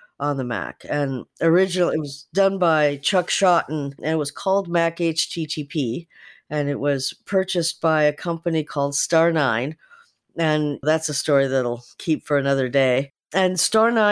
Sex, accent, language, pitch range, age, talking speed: female, American, English, 145-185 Hz, 50-69, 155 wpm